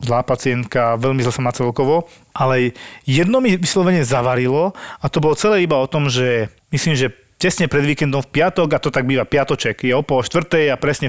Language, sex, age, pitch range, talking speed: Slovak, male, 40-59, 125-155 Hz, 200 wpm